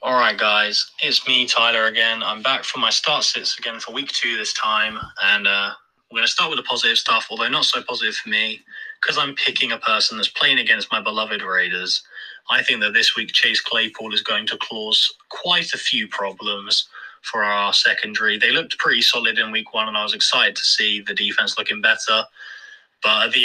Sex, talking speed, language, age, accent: male, 210 wpm, English, 20-39, British